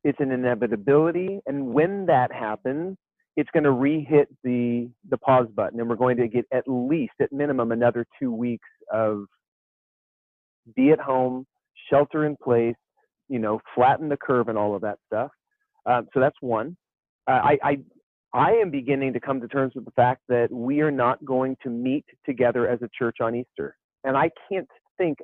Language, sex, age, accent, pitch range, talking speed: English, male, 40-59, American, 120-150 Hz, 185 wpm